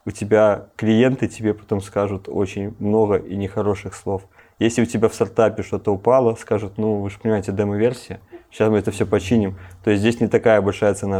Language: Russian